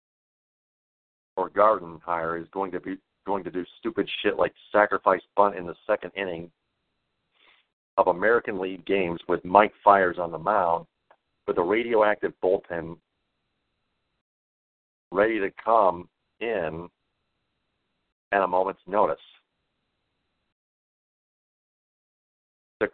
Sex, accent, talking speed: male, American, 110 wpm